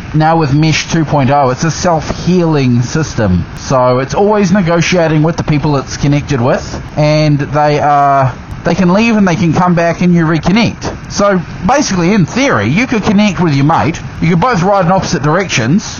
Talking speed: 185 wpm